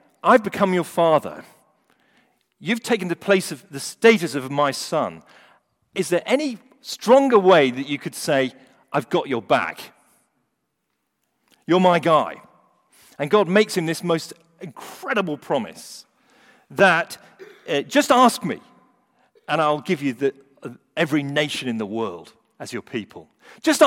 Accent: British